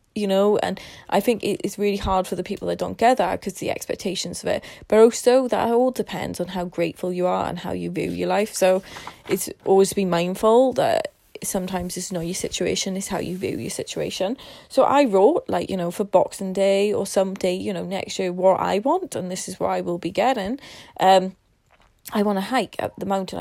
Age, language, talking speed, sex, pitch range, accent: 20-39, English, 225 wpm, female, 190-235 Hz, British